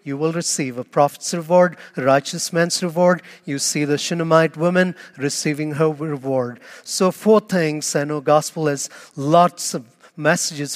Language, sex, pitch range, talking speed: English, male, 150-185 Hz, 155 wpm